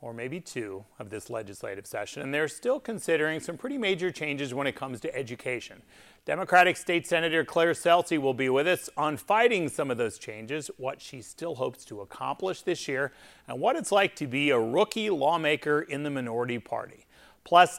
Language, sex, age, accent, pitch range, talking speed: English, male, 40-59, American, 125-170 Hz, 190 wpm